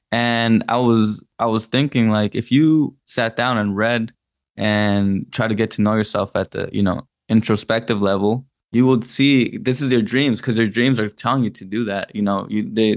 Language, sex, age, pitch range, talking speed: English, male, 10-29, 105-120 Hz, 210 wpm